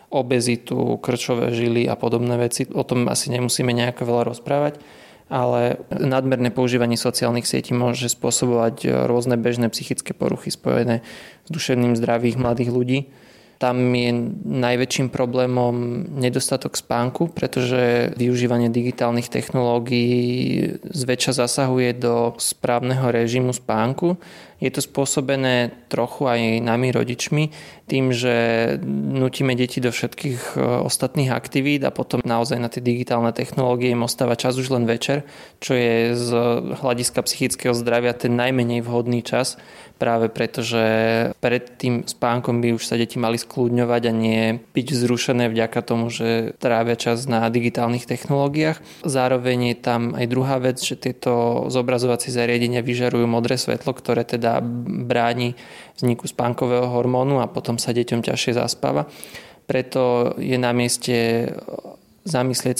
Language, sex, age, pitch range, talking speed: Slovak, male, 20-39, 120-130 Hz, 130 wpm